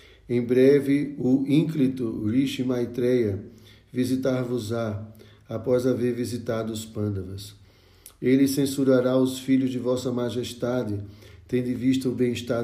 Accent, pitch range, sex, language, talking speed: Brazilian, 110-130 Hz, male, Portuguese, 115 wpm